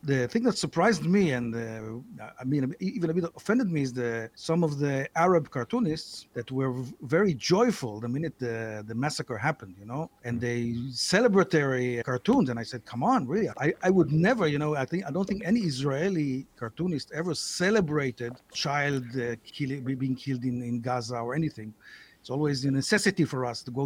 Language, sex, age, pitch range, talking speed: English, male, 50-69, 125-185 Hz, 195 wpm